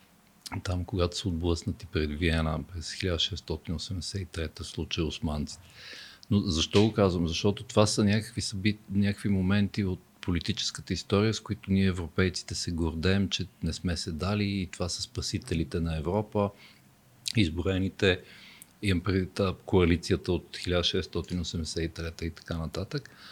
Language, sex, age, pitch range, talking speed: Bulgarian, male, 50-69, 85-105 Hz, 130 wpm